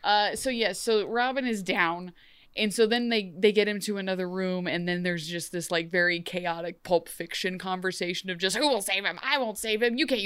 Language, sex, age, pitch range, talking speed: English, female, 20-39, 180-240 Hz, 235 wpm